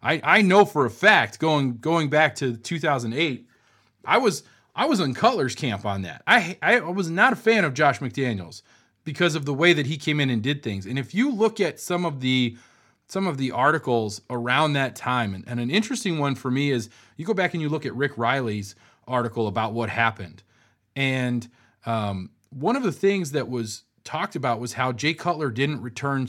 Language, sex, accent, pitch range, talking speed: English, male, American, 115-150 Hz, 215 wpm